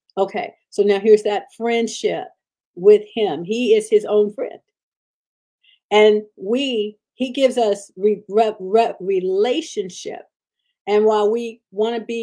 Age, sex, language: 50-69, female, English